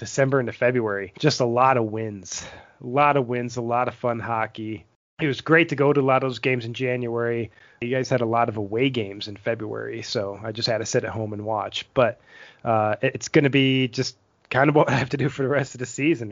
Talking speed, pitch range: 255 wpm, 115-135 Hz